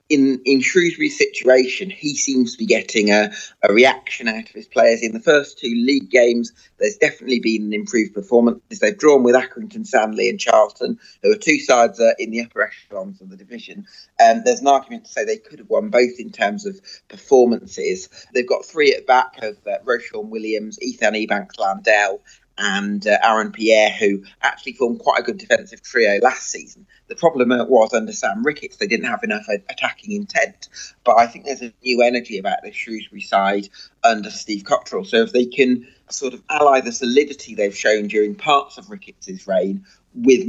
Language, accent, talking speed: English, British, 195 wpm